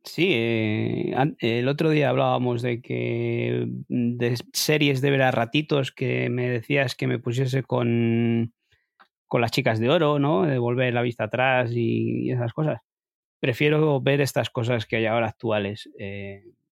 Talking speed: 160 wpm